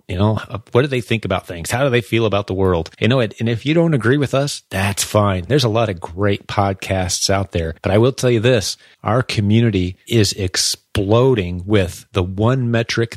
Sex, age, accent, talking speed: male, 30-49, American, 220 wpm